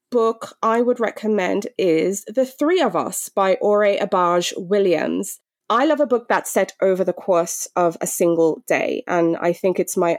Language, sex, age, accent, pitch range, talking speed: English, female, 20-39, British, 175-215 Hz, 185 wpm